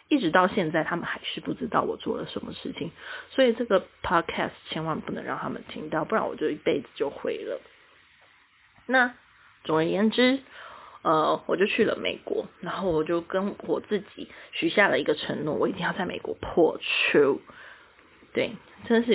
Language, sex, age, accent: Chinese, female, 20-39, native